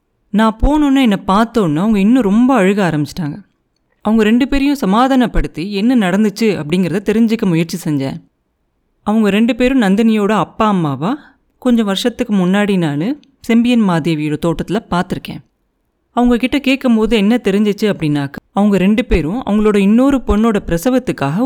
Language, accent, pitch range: Tamil, native, 170-230 Hz